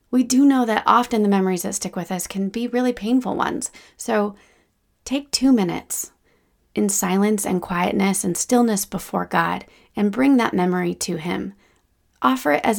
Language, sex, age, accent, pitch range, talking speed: English, female, 30-49, American, 185-230 Hz, 175 wpm